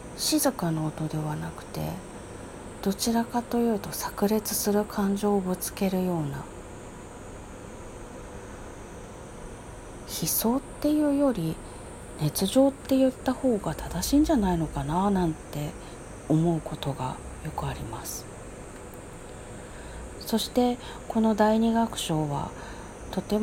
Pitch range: 125-210 Hz